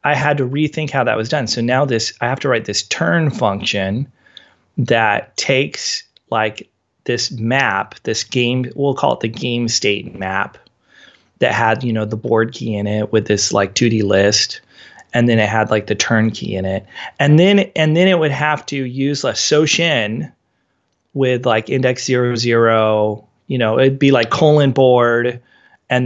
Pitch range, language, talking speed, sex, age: 110-135 Hz, English, 185 wpm, male, 30-49